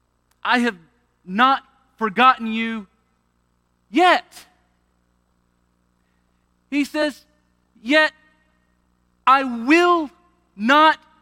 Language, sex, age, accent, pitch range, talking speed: English, male, 40-59, American, 180-265 Hz, 65 wpm